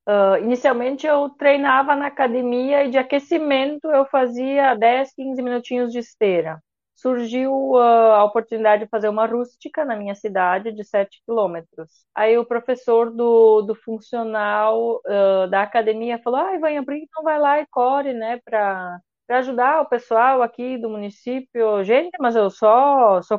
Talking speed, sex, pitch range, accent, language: 160 wpm, female, 220-290 Hz, Brazilian, Portuguese